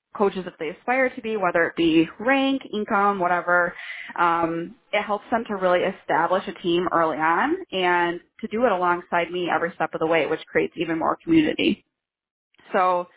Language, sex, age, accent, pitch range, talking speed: English, female, 20-39, American, 175-210 Hz, 180 wpm